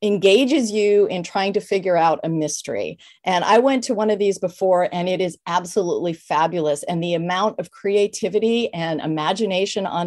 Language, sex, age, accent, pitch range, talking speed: English, female, 40-59, American, 175-225 Hz, 180 wpm